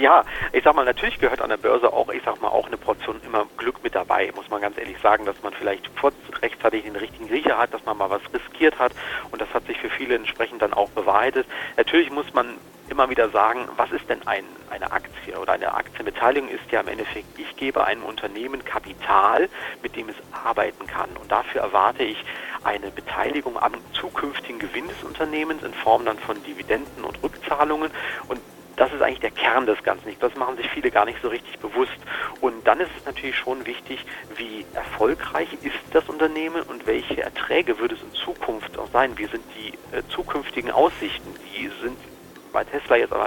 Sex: male